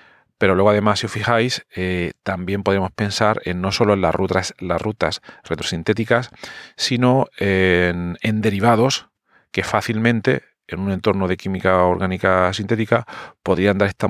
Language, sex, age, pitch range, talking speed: Spanish, male, 40-59, 95-110 Hz, 145 wpm